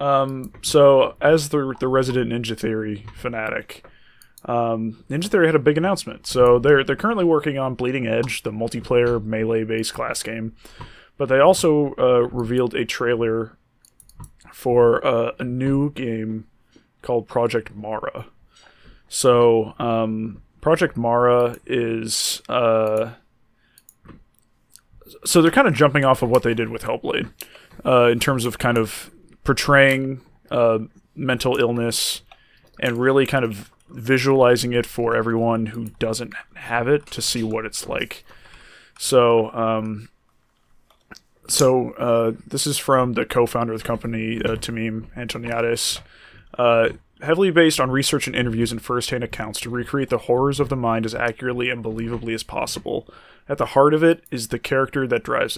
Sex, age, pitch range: male, 20-39, 115-135 Hz